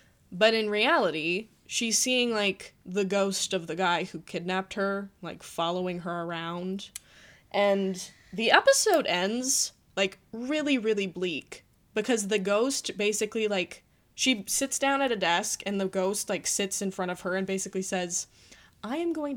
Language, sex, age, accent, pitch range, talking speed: English, female, 10-29, American, 185-245 Hz, 160 wpm